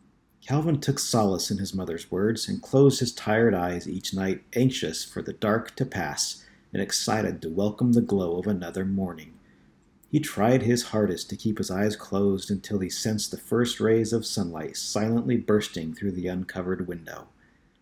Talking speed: 175 wpm